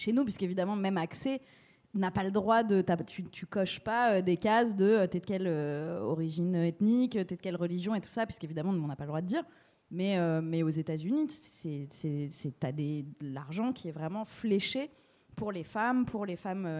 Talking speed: 205 wpm